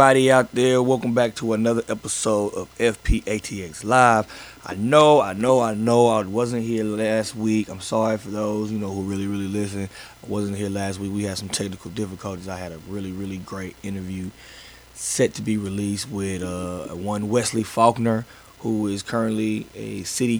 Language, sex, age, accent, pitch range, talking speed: English, male, 20-39, American, 95-115 Hz, 180 wpm